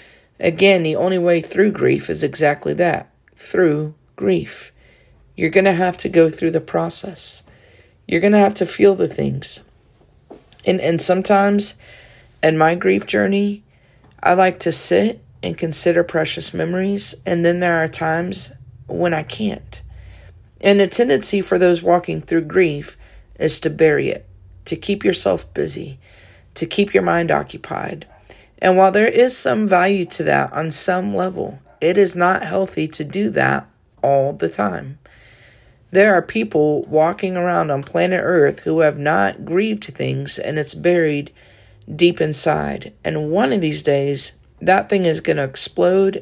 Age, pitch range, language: 40-59, 120-180 Hz, English